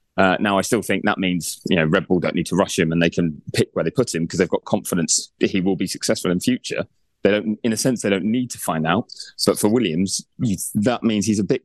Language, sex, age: English, male, 30-49